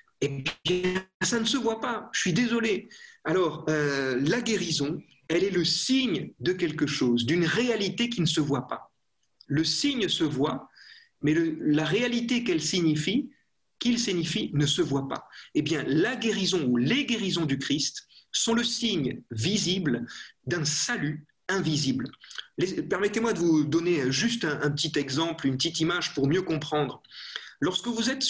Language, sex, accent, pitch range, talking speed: French, male, French, 150-230 Hz, 170 wpm